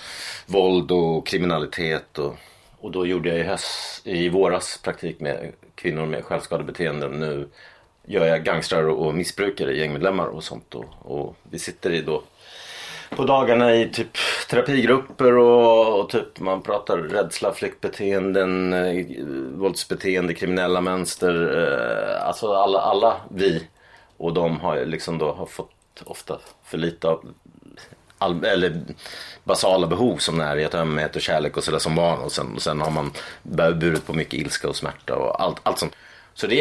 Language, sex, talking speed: Swedish, male, 155 wpm